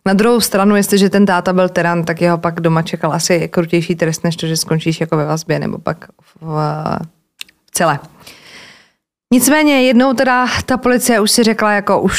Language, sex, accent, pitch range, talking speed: Czech, female, native, 170-205 Hz, 185 wpm